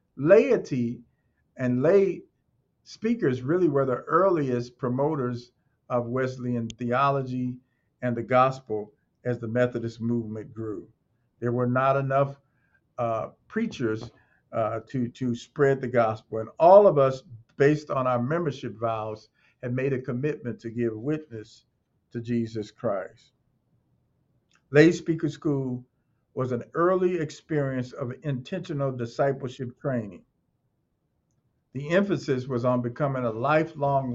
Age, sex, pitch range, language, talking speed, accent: 50-69, male, 115-140 Hz, English, 120 wpm, American